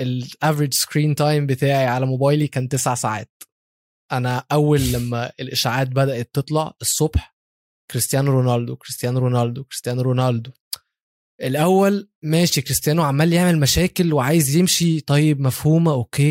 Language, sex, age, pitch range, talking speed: Arabic, male, 20-39, 130-160 Hz, 120 wpm